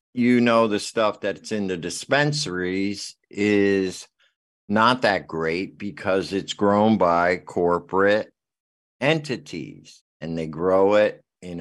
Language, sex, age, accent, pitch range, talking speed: English, male, 50-69, American, 90-115 Hz, 120 wpm